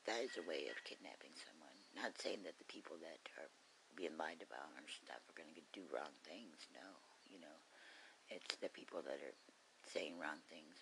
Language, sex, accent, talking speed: English, female, American, 200 wpm